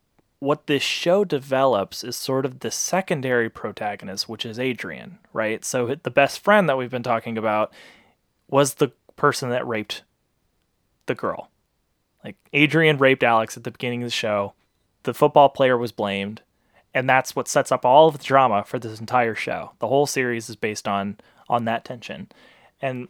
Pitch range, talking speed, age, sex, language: 115-145 Hz, 175 wpm, 20-39, male, English